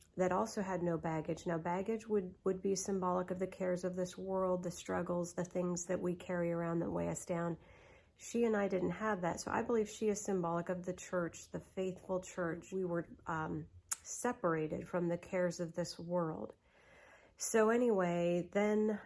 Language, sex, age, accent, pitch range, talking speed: English, female, 40-59, American, 175-190 Hz, 190 wpm